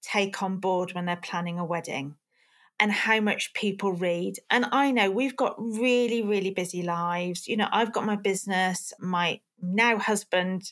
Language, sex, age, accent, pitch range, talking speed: English, female, 40-59, British, 195-255 Hz, 175 wpm